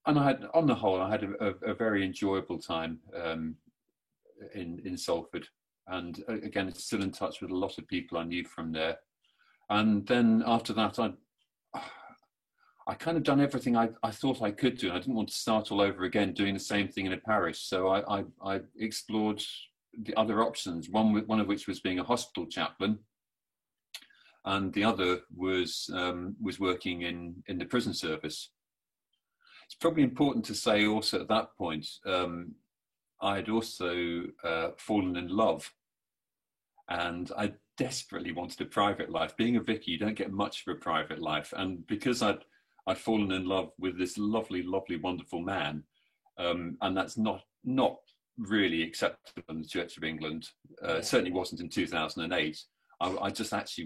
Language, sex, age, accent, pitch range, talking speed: English, male, 40-59, British, 85-110 Hz, 180 wpm